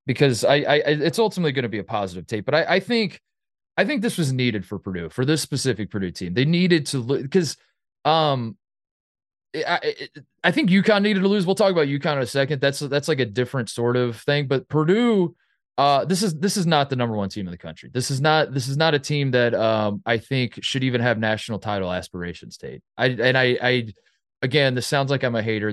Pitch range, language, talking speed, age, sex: 105-145 Hz, English, 240 wpm, 20-39, male